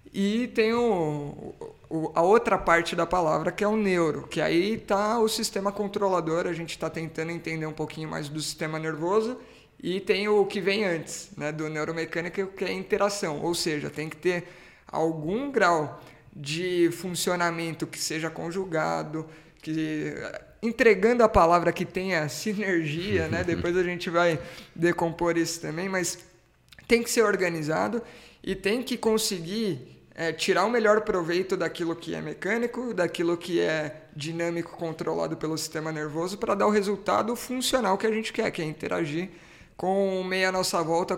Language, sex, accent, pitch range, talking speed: Portuguese, male, Brazilian, 160-205 Hz, 165 wpm